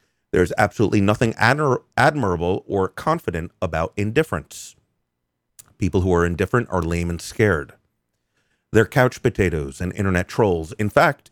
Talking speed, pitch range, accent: 135 wpm, 85-120 Hz, American